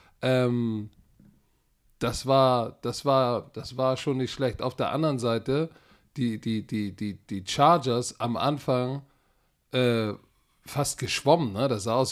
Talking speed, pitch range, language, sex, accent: 140 wpm, 115-135 Hz, German, male, German